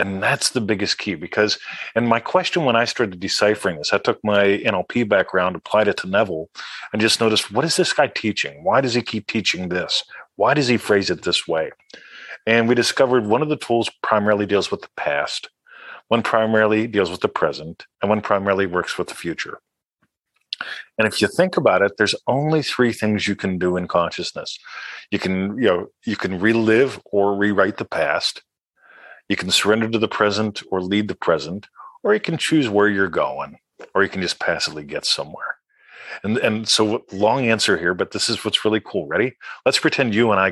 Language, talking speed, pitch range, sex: English, 200 wpm, 100-120 Hz, male